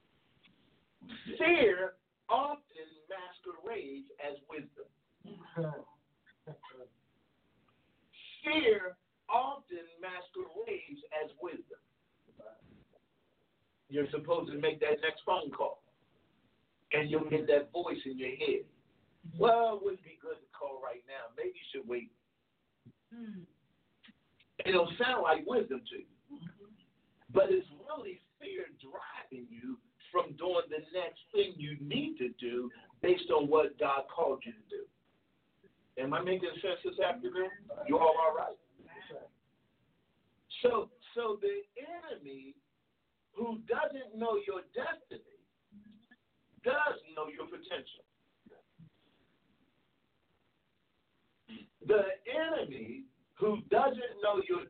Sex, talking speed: male, 105 wpm